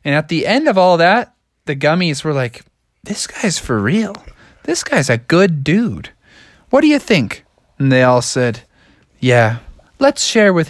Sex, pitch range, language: male, 115-160 Hz, English